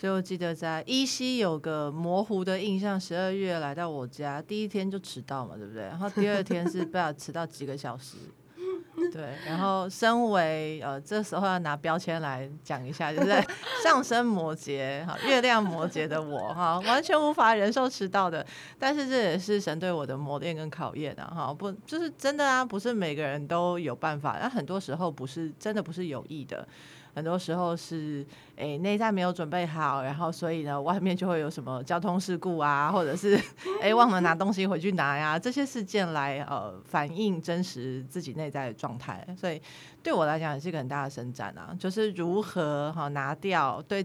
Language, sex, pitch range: Chinese, female, 145-195 Hz